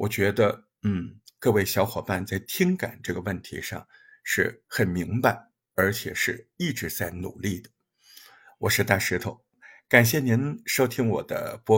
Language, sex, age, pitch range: Chinese, male, 50-69, 105-135 Hz